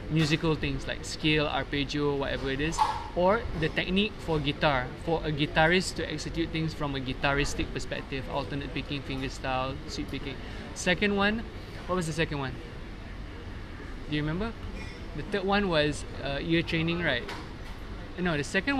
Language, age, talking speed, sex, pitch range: English, 20-39, 155 wpm, male, 135-170 Hz